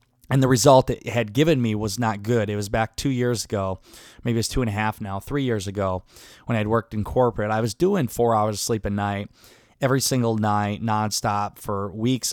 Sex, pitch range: male, 110-135 Hz